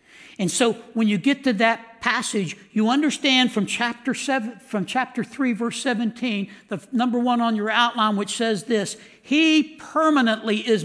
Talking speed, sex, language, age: 165 wpm, male, English, 60-79